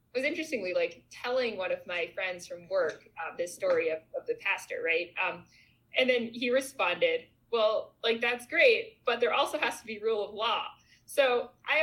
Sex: female